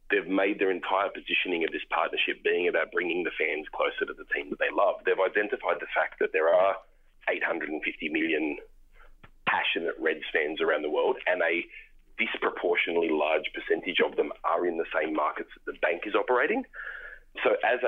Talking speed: 180 wpm